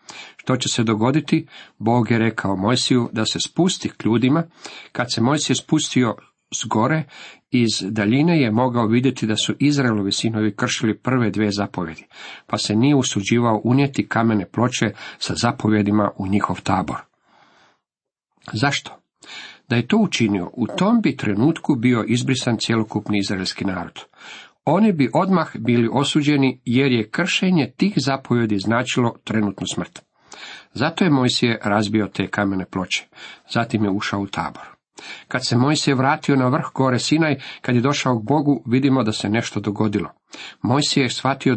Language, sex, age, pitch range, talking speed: Croatian, male, 50-69, 105-140 Hz, 150 wpm